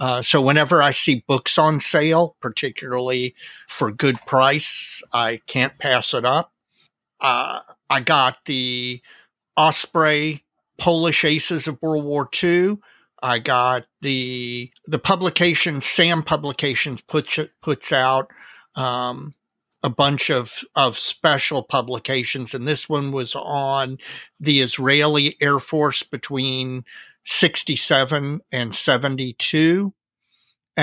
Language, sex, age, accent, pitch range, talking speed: English, male, 50-69, American, 130-160 Hz, 115 wpm